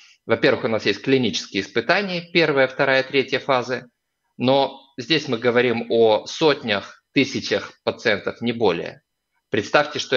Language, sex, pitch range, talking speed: Russian, male, 110-150 Hz, 130 wpm